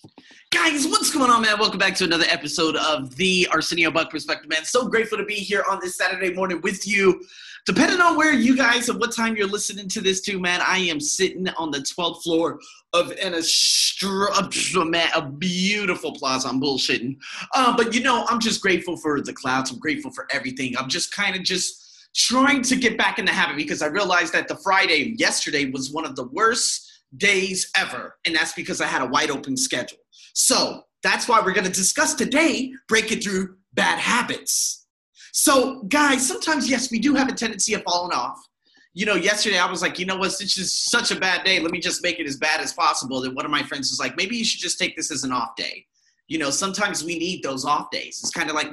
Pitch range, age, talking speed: 170-235 Hz, 30-49, 225 wpm